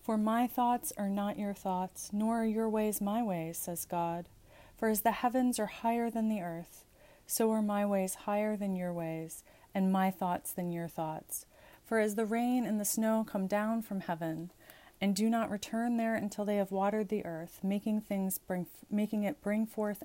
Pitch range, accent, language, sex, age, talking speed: 185-220 Hz, American, English, female, 30-49, 195 wpm